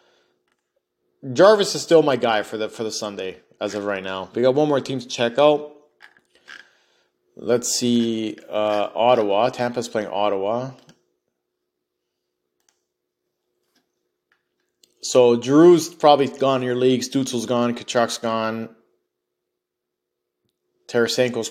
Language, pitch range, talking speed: English, 110-130 Hz, 115 wpm